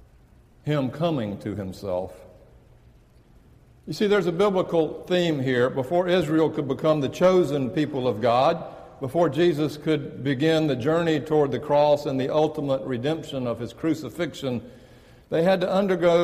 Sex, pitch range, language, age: male, 125-160 Hz, English, 60-79